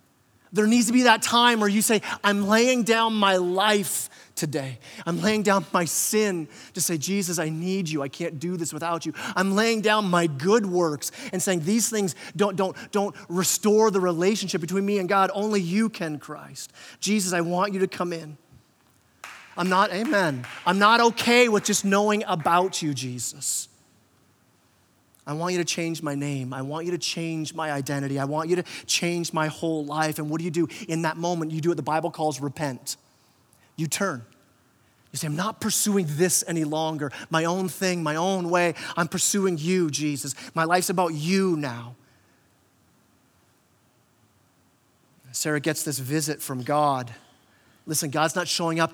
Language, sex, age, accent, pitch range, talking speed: English, male, 30-49, American, 145-190 Hz, 185 wpm